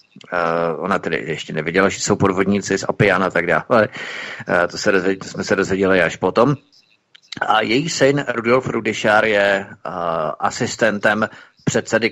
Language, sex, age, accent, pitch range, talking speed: Czech, male, 30-49, native, 100-130 Hz, 160 wpm